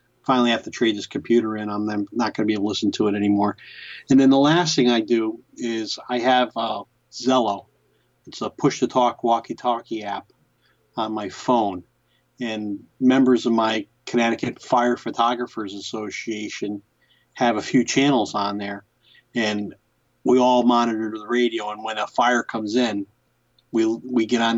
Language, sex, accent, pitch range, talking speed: English, male, American, 110-120 Hz, 165 wpm